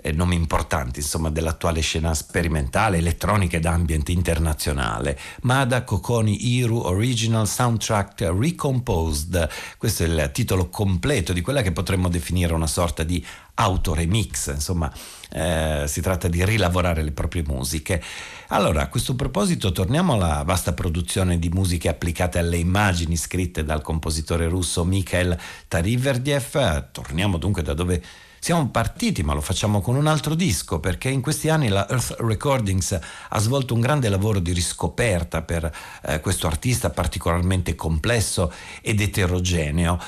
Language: Italian